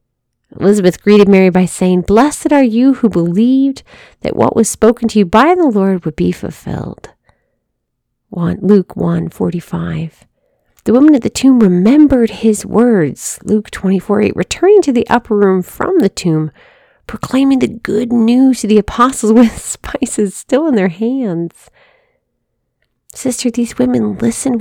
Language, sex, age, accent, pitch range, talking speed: English, female, 40-59, American, 190-260 Hz, 145 wpm